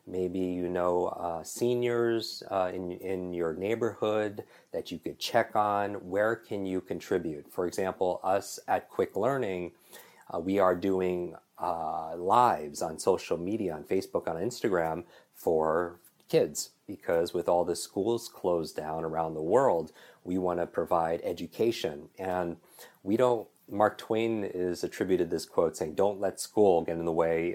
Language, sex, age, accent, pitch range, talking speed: English, male, 30-49, American, 85-100 Hz, 155 wpm